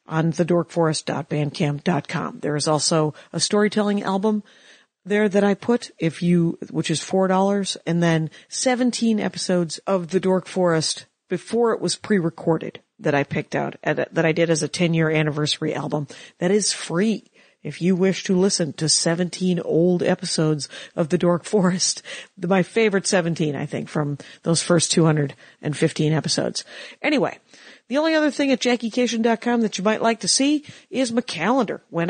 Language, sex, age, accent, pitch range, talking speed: English, female, 50-69, American, 170-230 Hz, 165 wpm